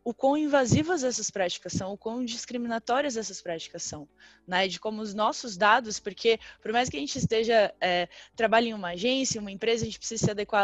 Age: 10-29